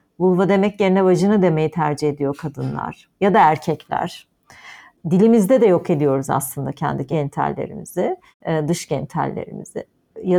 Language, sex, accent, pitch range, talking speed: Turkish, female, native, 150-185 Hz, 120 wpm